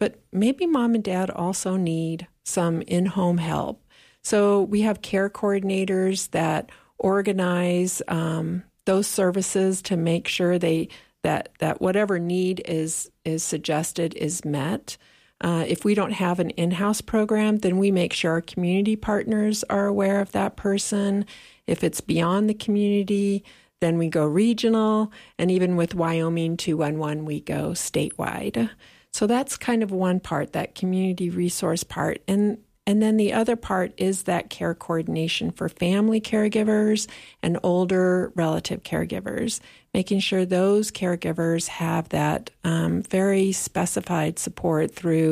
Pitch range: 170-200 Hz